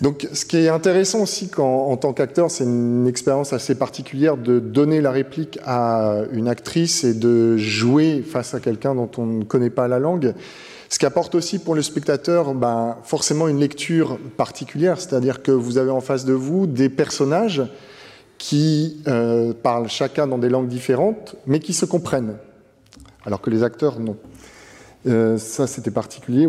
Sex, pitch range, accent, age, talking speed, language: male, 125-155 Hz, French, 30-49, 175 wpm, French